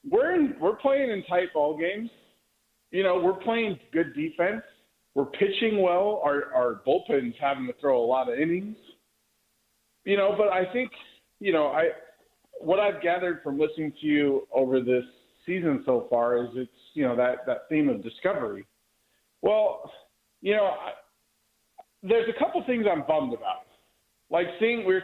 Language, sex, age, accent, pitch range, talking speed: English, male, 40-59, American, 140-205 Hz, 170 wpm